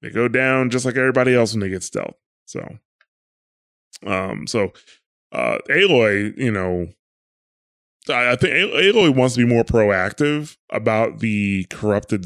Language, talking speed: English, 145 wpm